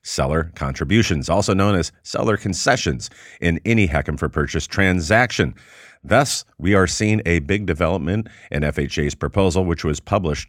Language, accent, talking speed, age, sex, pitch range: English, American, 150 wpm, 40-59, male, 80-105 Hz